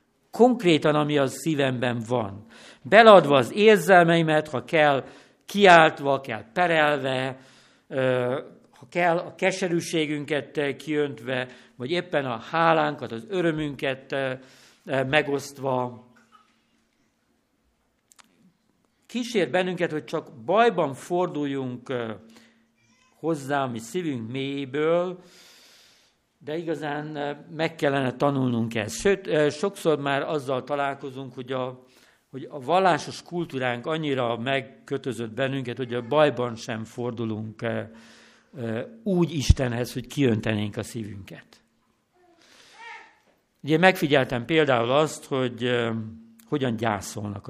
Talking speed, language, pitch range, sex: 90 wpm, Hungarian, 125-160 Hz, male